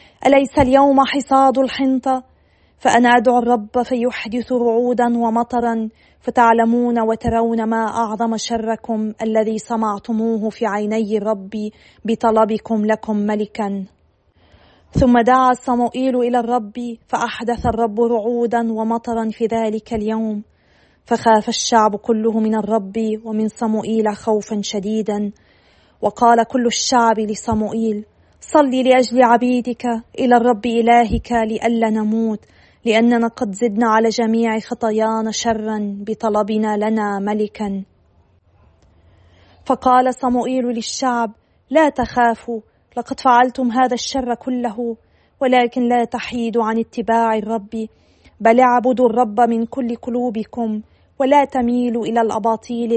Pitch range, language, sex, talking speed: 220-245 Hz, Arabic, female, 105 wpm